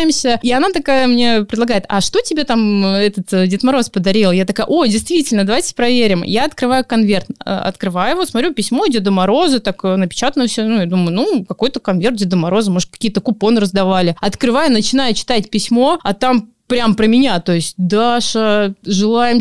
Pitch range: 210-255 Hz